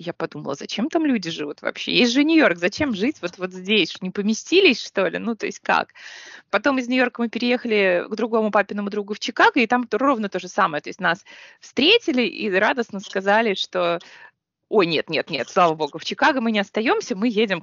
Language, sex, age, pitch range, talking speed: Russian, female, 20-39, 180-245 Hz, 200 wpm